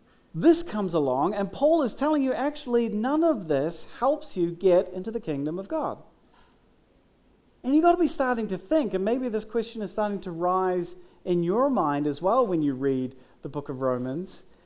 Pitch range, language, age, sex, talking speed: 185-280 Hz, English, 40-59, male, 195 wpm